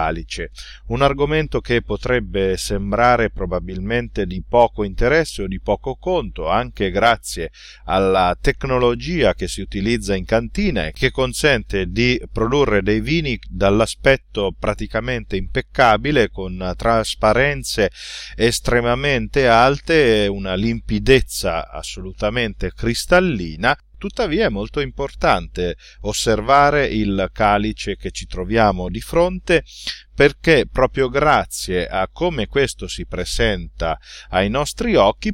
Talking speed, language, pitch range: 110 wpm, Italian, 95-140 Hz